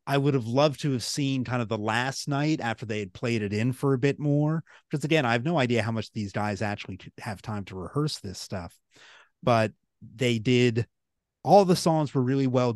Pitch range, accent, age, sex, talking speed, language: 110-150 Hz, American, 30-49, male, 225 wpm, English